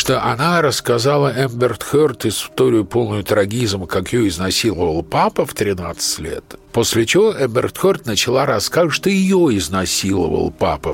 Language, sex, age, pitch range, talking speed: Russian, male, 50-69, 100-145 Hz, 135 wpm